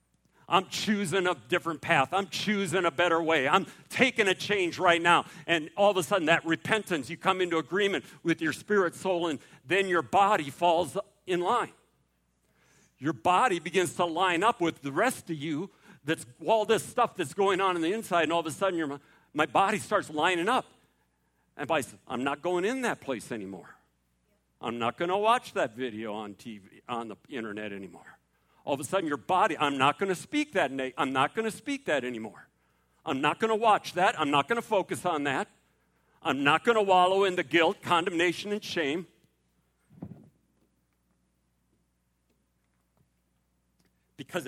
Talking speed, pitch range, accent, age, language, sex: 175 wpm, 115-190 Hz, American, 60-79, English, male